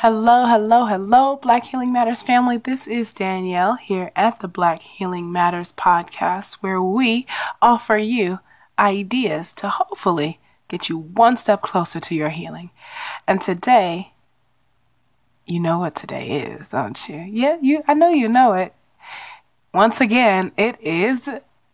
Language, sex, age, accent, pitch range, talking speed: English, female, 20-39, American, 180-250 Hz, 145 wpm